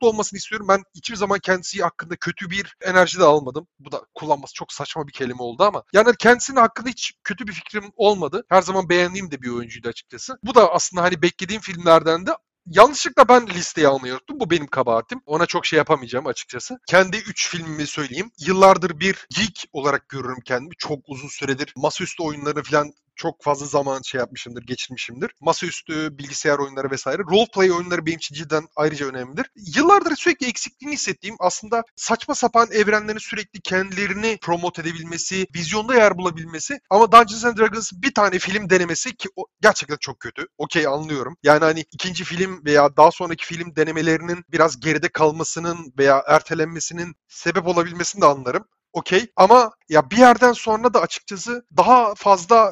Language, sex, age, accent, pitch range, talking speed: Turkish, male, 40-59, native, 155-210 Hz, 165 wpm